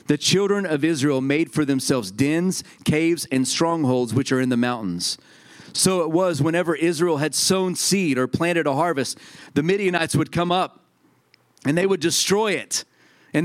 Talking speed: 175 wpm